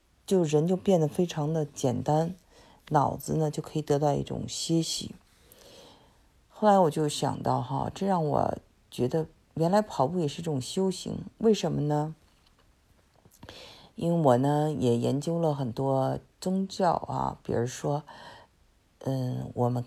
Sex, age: female, 50-69